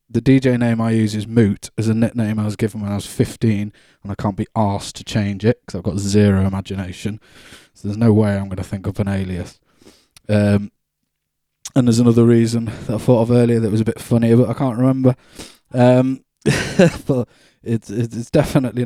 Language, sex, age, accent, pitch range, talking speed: English, male, 20-39, British, 105-120 Hz, 205 wpm